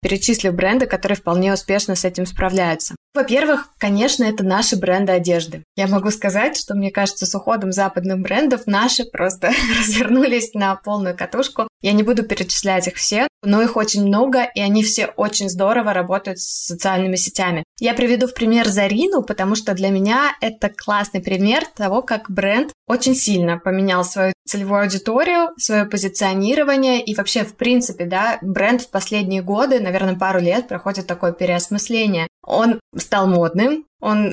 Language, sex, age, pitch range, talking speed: Russian, female, 20-39, 185-225 Hz, 160 wpm